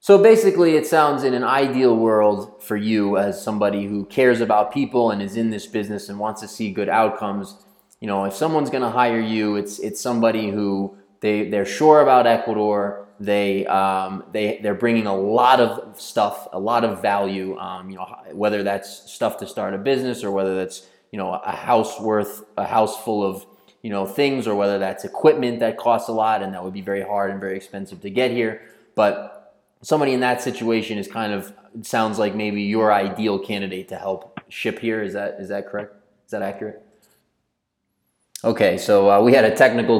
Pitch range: 100-120 Hz